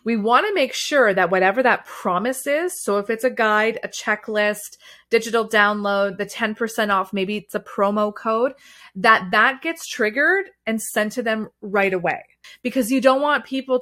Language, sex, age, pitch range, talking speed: English, female, 30-49, 200-255 Hz, 180 wpm